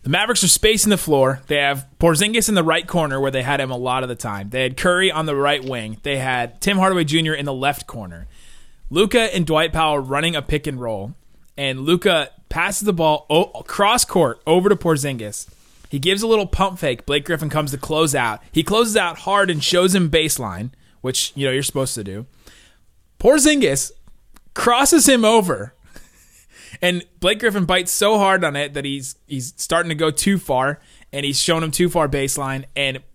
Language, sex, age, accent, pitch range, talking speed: English, male, 30-49, American, 135-180 Hz, 205 wpm